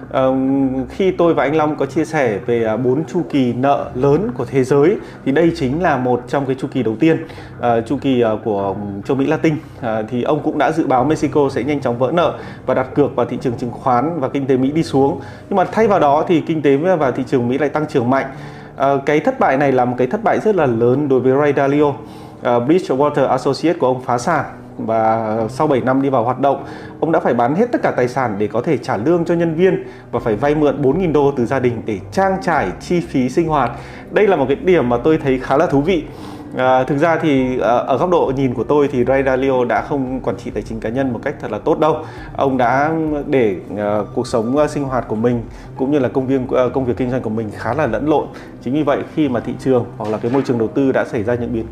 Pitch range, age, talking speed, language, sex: 120-150 Hz, 20-39, 270 wpm, Vietnamese, male